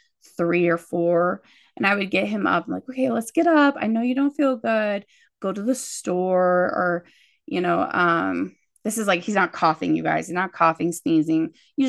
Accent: American